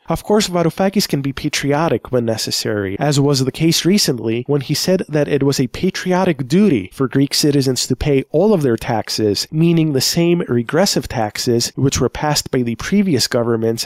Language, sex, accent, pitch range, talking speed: English, male, American, 125-170 Hz, 185 wpm